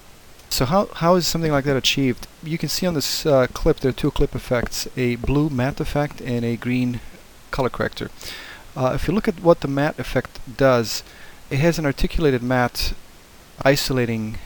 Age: 30-49